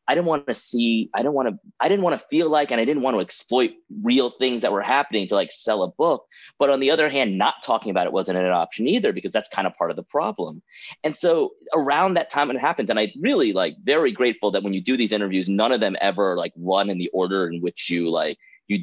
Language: English